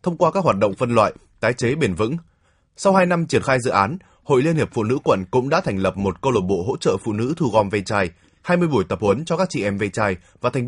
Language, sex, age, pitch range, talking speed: Vietnamese, male, 20-39, 100-145 Hz, 290 wpm